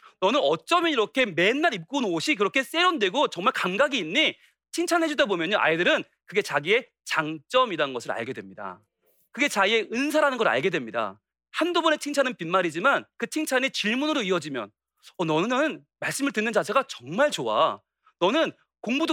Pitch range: 200-310 Hz